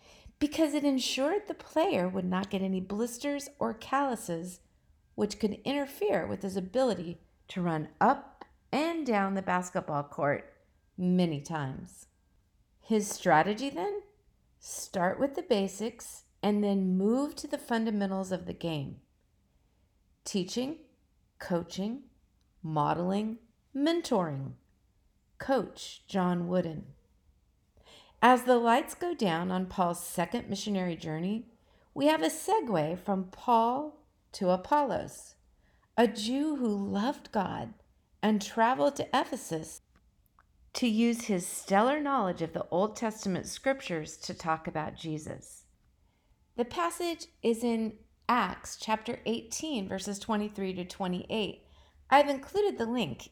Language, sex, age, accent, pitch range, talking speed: English, female, 50-69, American, 180-260 Hz, 120 wpm